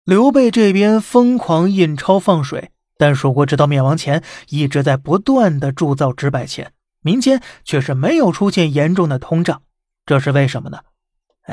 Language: Chinese